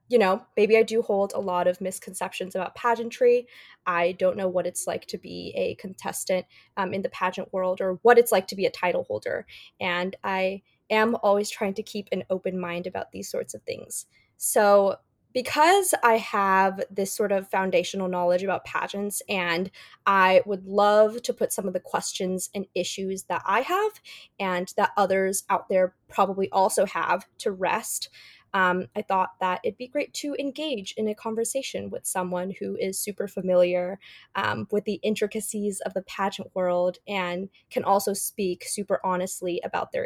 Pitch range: 190-240 Hz